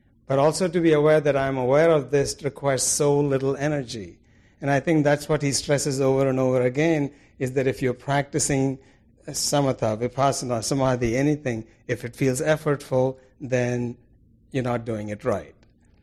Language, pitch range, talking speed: English, 120-150 Hz, 165 wpm